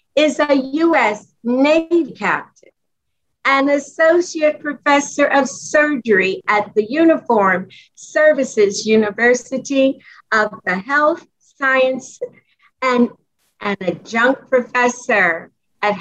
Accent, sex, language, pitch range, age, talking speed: American, female, English, 220-285 Hz, 50-69, 90 wpm